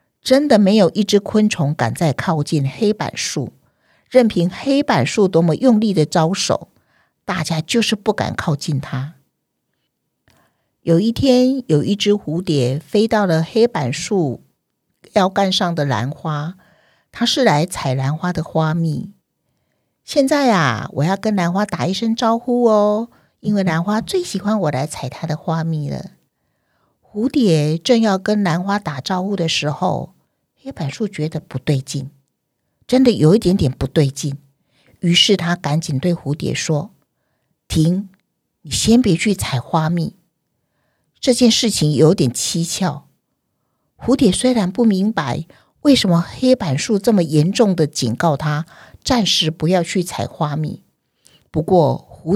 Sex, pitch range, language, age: female, 150-210 Hz, Chinese, 50-69